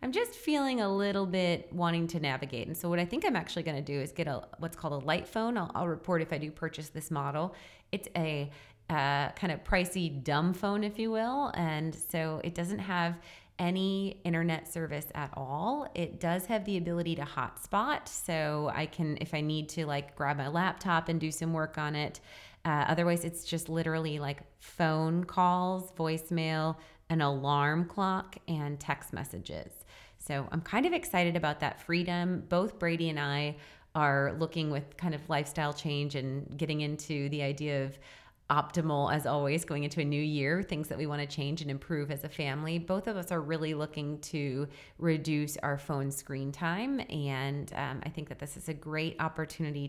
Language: English